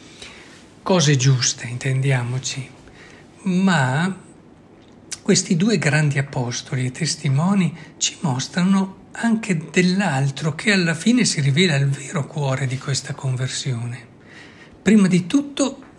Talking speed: 105 wpm